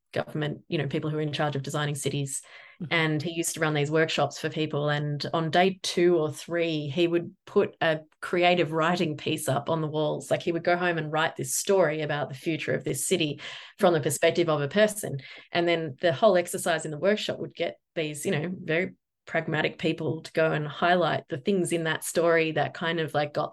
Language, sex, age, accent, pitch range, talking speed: English, female, 20-39, Australian, 150-175 Hz, 225 wpm